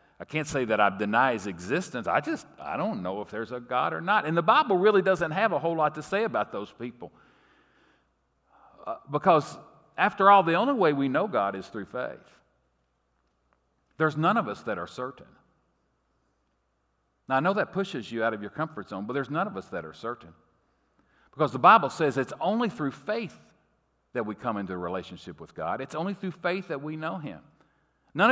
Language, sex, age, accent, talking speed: English, male, 50-69, American, 205 wpm